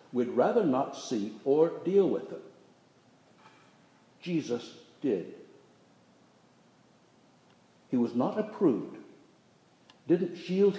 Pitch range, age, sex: 145-210 Hz, 60-79, male